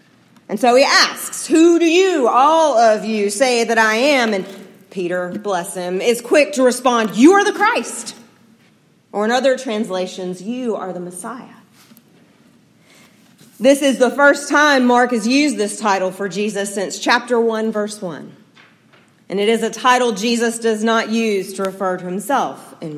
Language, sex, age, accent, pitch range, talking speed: English, female, 40-59, American, 200-260 Hz, 170 wpm